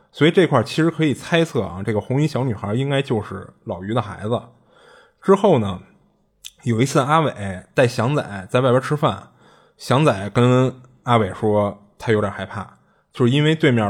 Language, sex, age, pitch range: Chinese, male, 20-39, 100-135 Hz